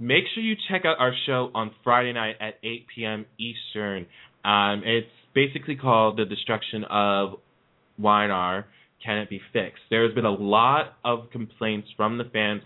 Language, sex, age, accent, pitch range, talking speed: English, male, 20-39, American, 100-130 Hz, 175 wpm